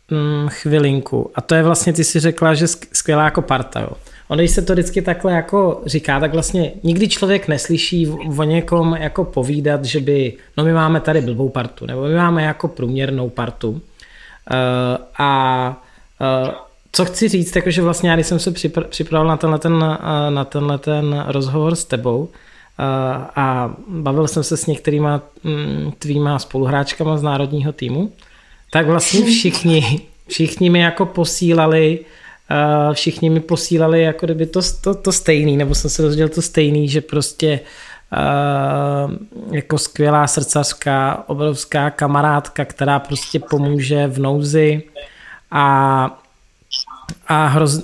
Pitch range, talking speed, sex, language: 140-170 Hz, 140 wpm, male, Czech